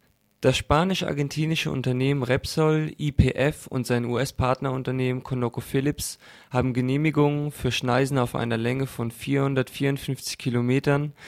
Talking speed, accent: 100 wpm, German